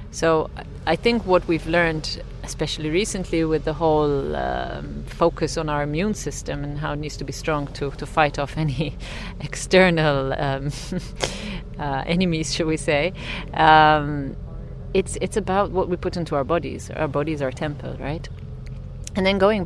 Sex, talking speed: female, 165 wpm